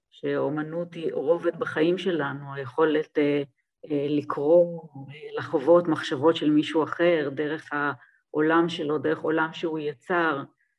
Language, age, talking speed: Hebrew, 40-59, 120 wpm